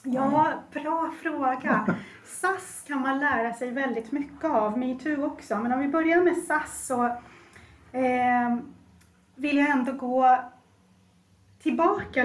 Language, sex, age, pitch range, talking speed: Swedish, female, 30-49, 225-275 Hz, 125 wpm